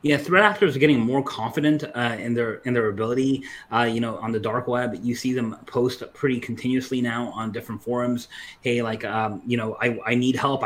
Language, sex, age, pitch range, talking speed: English, male, 20-39, 115-130 Hz, 220 wpm